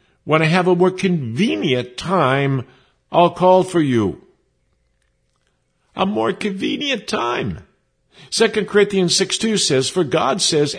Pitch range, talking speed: 125-180 Hz, 120 wpm